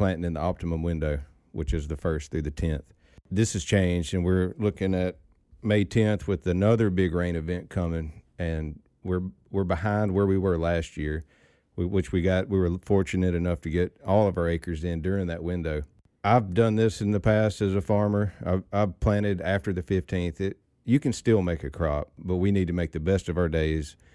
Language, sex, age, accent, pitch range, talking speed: English, male, 40-59, American, 80-95 Hz, 210 wpm